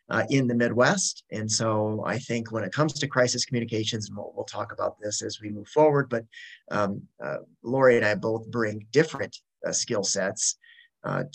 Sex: male